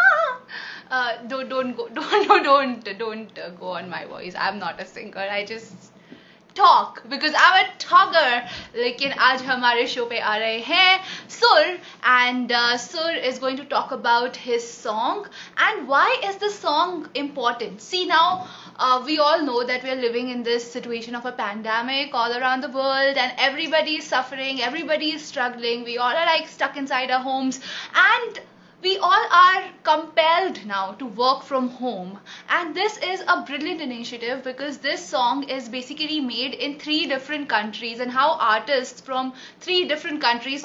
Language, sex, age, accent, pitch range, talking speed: Hindi, female, 20-39, native, 240-315 Hz, 170 wpm